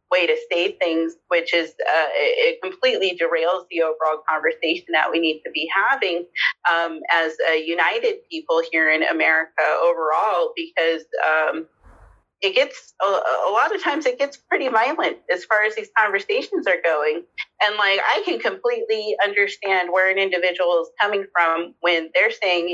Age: 30-49